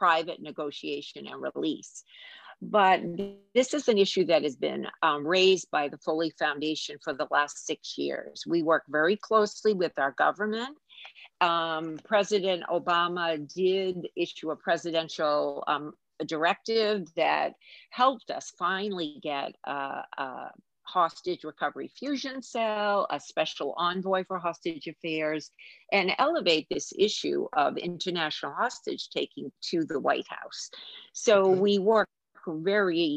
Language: English